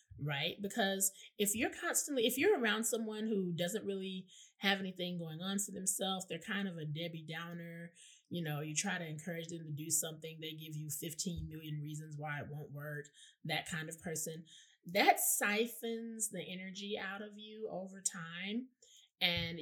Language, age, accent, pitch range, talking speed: English, 20-39, American, 160-210 Hz, 175 wpm